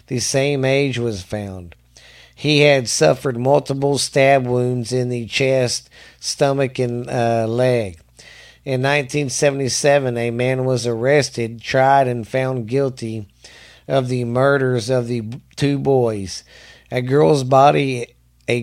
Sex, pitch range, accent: male, 115-135 Hz, American